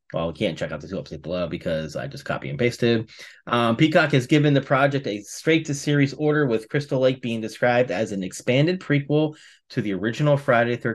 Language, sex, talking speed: English, male, 210 wpm